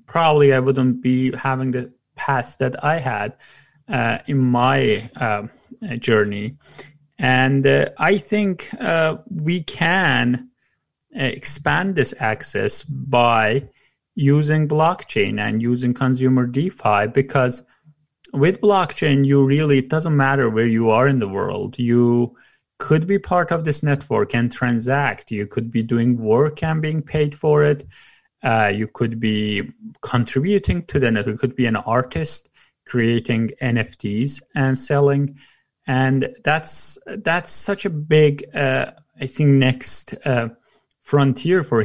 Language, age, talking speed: English, 30-49, 135 wpm